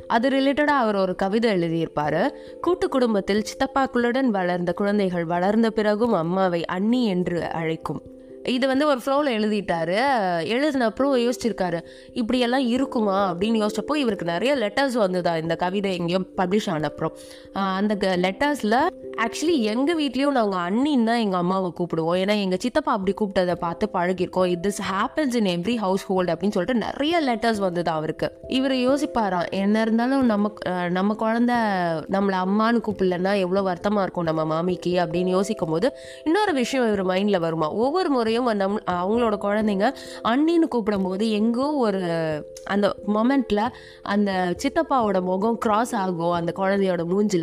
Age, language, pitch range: 20-39, Tamil, 180-240 Hz